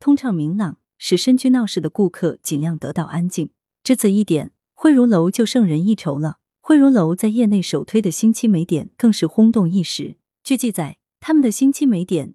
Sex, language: female, Chinese